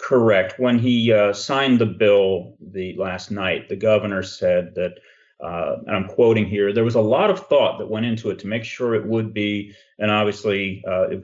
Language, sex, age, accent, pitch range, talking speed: English, male, 40-59, American, 100-115 Hz, 205 wpm